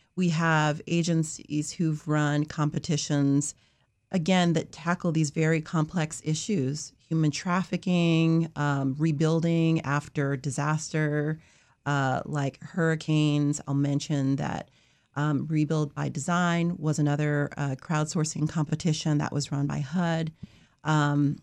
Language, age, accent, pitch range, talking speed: English, 30-49, American, 150-165 Hz, 110 wpm